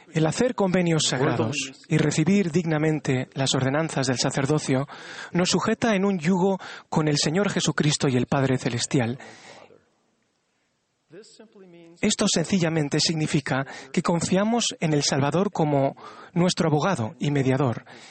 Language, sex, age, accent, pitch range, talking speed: Spanish, male, 40-59, Spanish, 140-180 Hz, 125 wpm